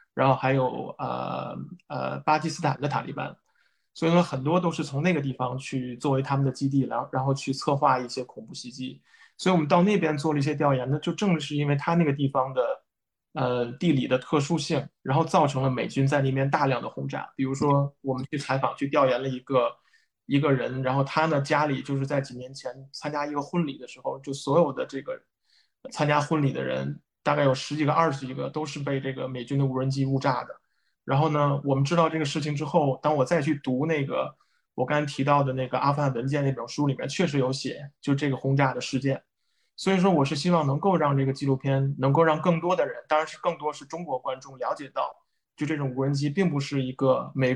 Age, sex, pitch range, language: 20-39, male, 130-155 Hz, Chinese